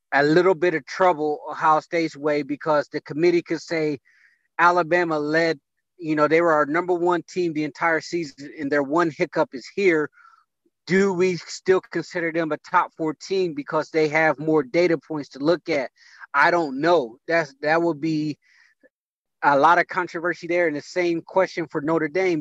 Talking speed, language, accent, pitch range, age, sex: 180 wpm, English, American, 155-180 Hz, 30-49, male